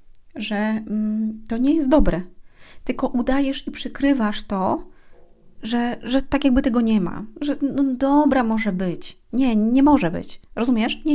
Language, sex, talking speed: Polish, female, 145 wpm